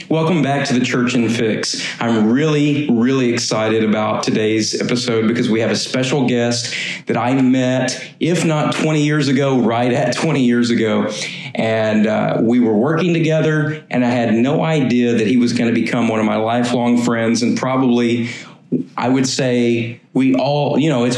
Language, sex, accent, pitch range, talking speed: English, male, American, 115-145 Hz, 180 wpm